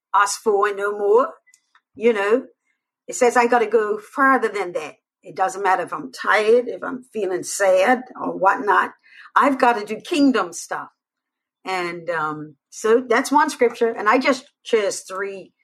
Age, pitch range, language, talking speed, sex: 50-69, 185-245 Hz, English, 170 wpm, female